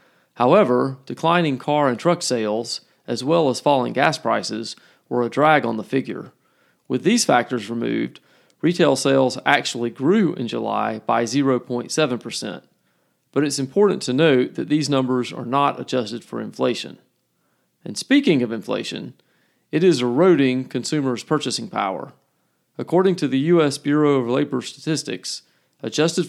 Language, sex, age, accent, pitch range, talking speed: English, male, 40-59, American, 120-150 Hz, 140 wpm